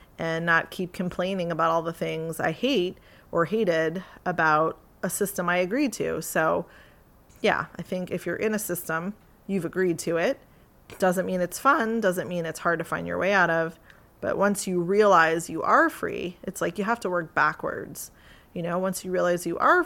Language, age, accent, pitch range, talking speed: English, 30-49, American, 170-205 Hz, 200 wpm